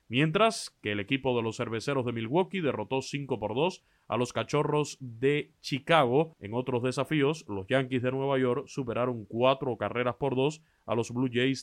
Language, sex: Spanish, male